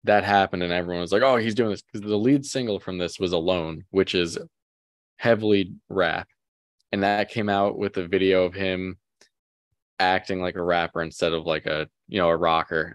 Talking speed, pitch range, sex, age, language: 200 wpm, 90-105 Hz, male, 20-39, English